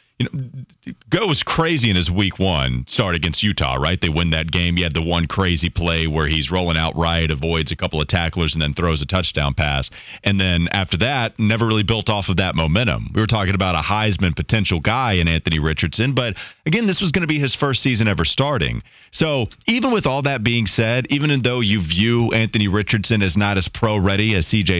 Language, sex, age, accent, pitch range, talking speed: English, male, 30-49, American, 90-120 Hz, 220 wpm